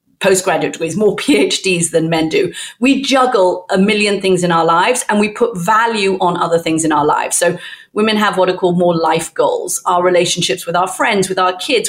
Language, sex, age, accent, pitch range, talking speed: English, female, 40-59, British, 175-250 Hz, 210 wpm